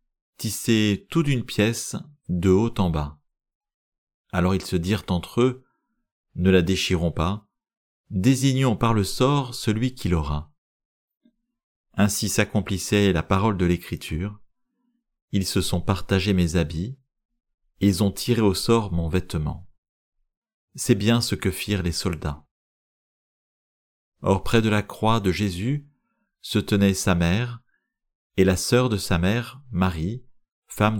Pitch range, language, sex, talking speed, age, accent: 90-125 Hz, French, male, 145 wpm, 40-59, French